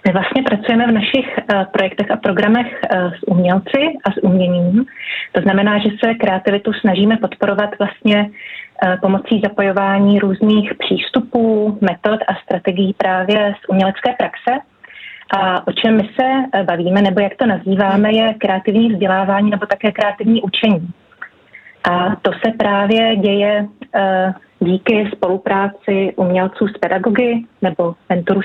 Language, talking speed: Czech, 130 wpm